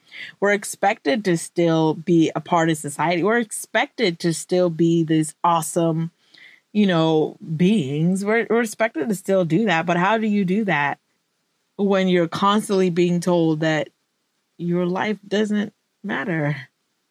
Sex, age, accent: female, 20-39, American